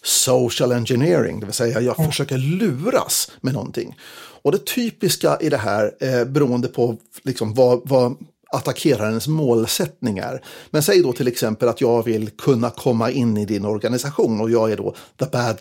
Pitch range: 120-155 Hz